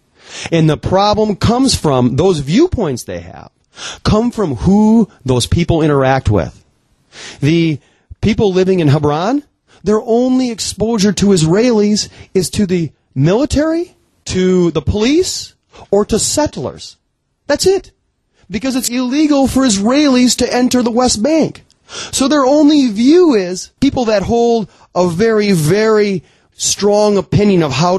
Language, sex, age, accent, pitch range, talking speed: English, male, 30-49, American, 135-220 Hz, 135 wpm